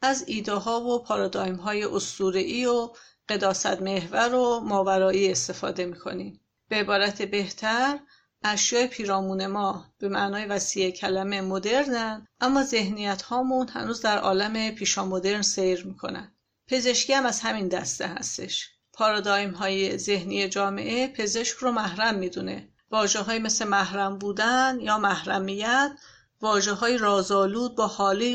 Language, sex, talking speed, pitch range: Persian, female, 120 wpm, 195-235 Hz